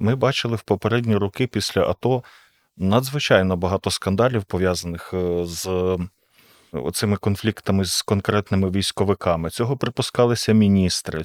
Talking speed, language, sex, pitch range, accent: 105 wpm, Ukrainian, male, 95-115 Hz, native